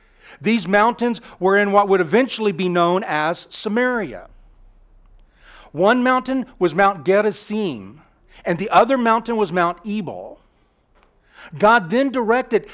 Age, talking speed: 50-69, 120 wpm